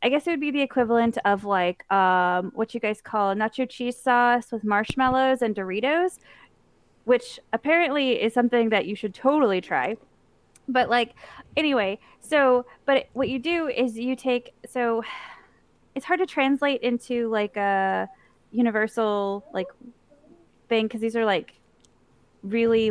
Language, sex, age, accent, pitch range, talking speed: English, female, 20-39, American, 205-260 Hz, 150 wpm